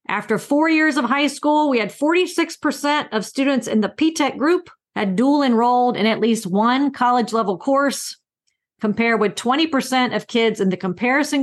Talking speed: 175 wpm